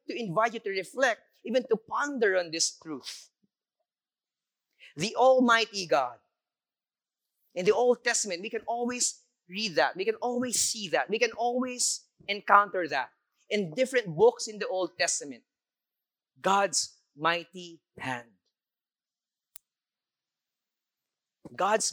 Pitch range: 160-230 Hz